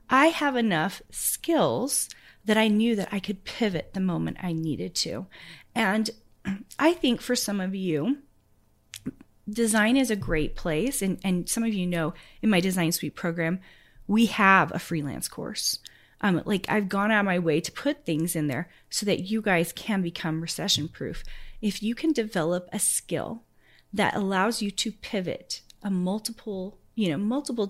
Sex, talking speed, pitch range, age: female, 175 wpm, 170-220 Hz, 30-49